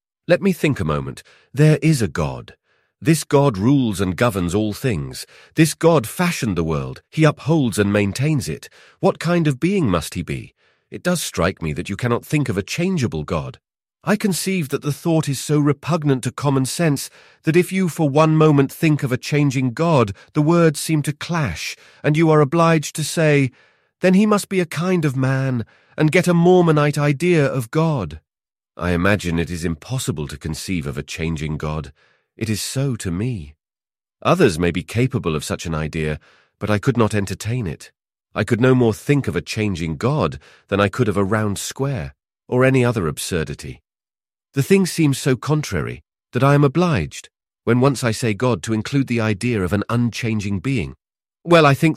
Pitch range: 100-150 Hz